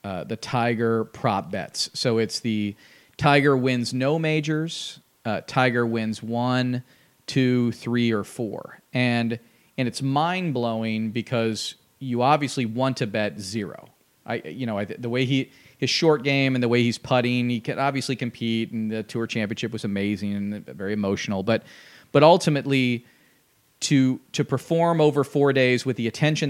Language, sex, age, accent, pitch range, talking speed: English, male, 40-59, American, 115-140 Hz, 165 wpm